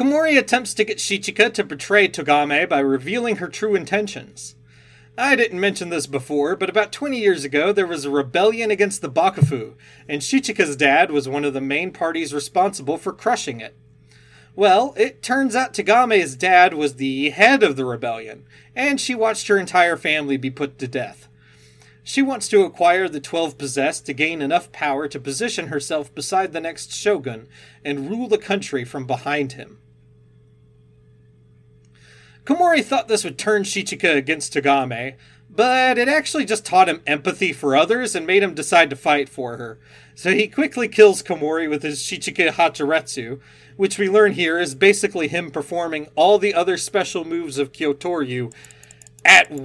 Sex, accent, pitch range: male, American, 135-205 Hz